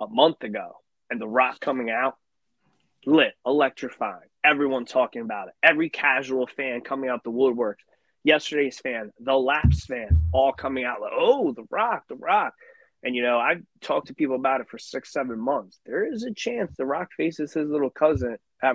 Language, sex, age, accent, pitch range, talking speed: English, male, 20-39, American, 125-165 Hz, 190 wpm